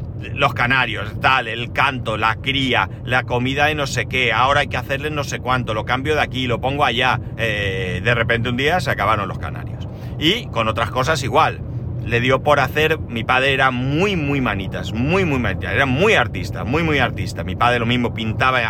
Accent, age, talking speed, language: Spanish, 40-59, 210 wpm, Spanish